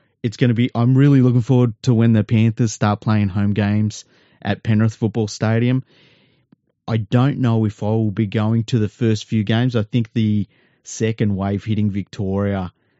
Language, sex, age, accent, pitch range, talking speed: English, male, 30-49, Australian, 100-120 Hz, 185 wpm